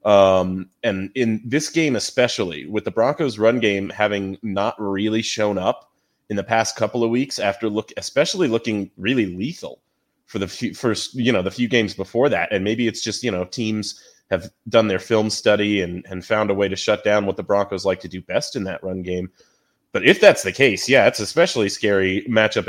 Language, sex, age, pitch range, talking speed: English, male, 30-49, 95-120 Hz, 210 wpm